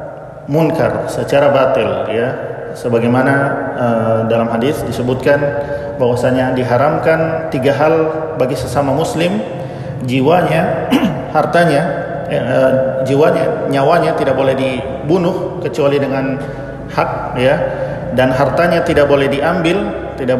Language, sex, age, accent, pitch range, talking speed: Indonesian, male, 40-59, native, 130-160 Hz, 105 wpm